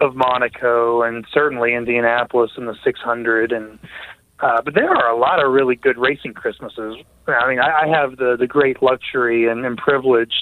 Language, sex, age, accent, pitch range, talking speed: English, male, 30-49, American, 120-140 Hz, 190 wpm